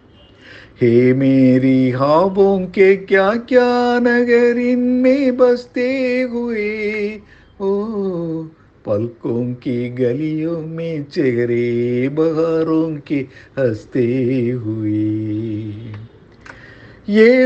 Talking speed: 70 wpm